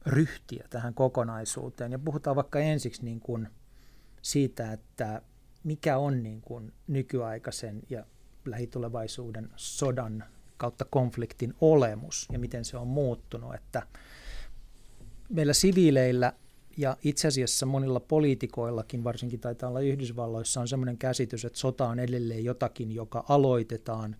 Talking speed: 115 wpm